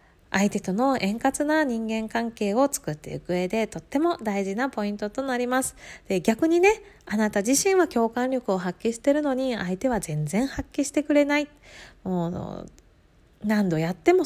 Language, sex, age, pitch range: Japanese, female, 20-39, 180-280 Hz